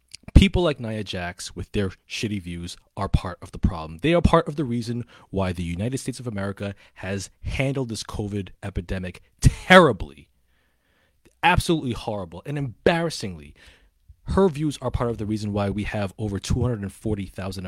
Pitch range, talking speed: 90-125 Hz, 160 wpm